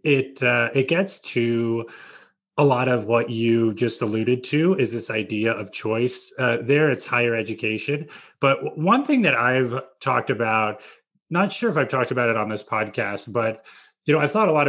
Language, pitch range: English, 115-145 Hz